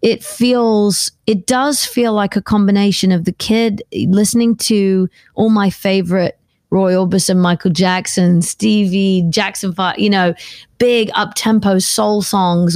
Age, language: 30-49, English